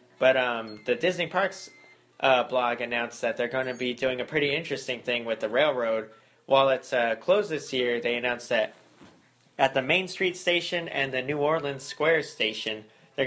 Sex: male